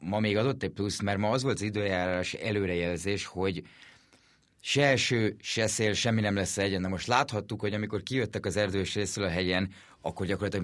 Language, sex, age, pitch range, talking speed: Hungarian, male, 30-49, 95-110 Hz, 190 wpm